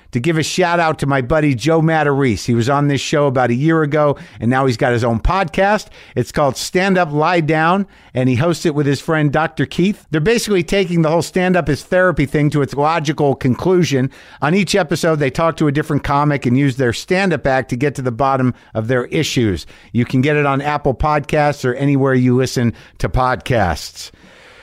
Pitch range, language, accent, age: 115-145 Hz, English, American, 50-69